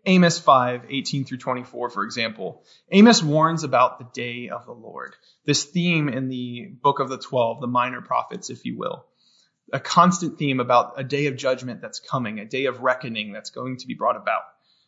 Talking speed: 200 wpm